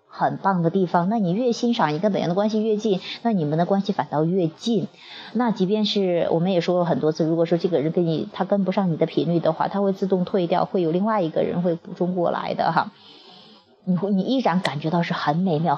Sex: female